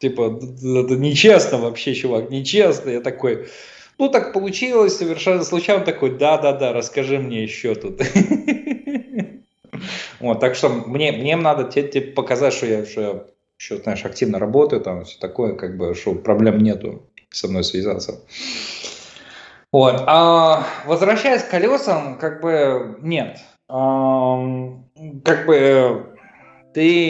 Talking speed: 115 wpm